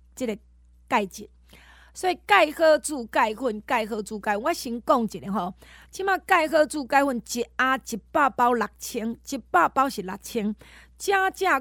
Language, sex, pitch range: Chinese, female, 210-275 Hz